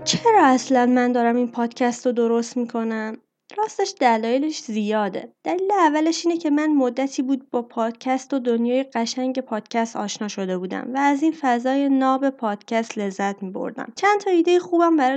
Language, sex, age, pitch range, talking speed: Persian, female, 20-39, 220-290 Hz, 160 wpm